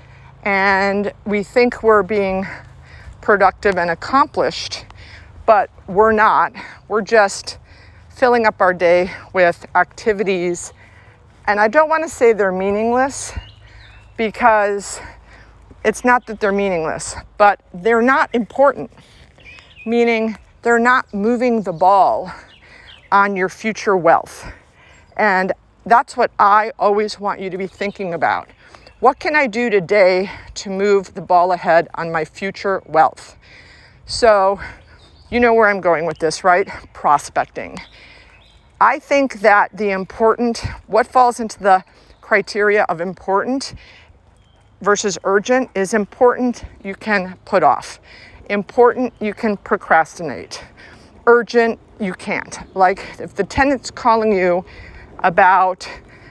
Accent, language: American, English